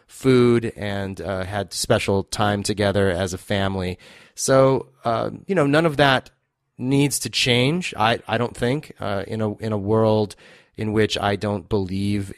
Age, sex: 30-49, male